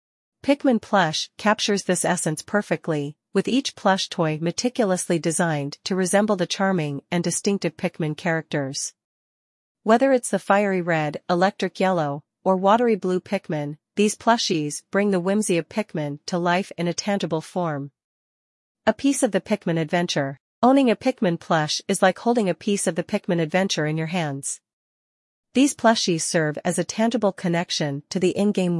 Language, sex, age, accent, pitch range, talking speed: English, female, 40-59, American, 160-205 Hz, 160 wpm